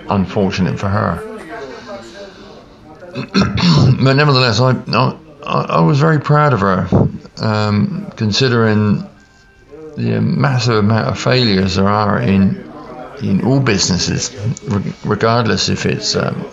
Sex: male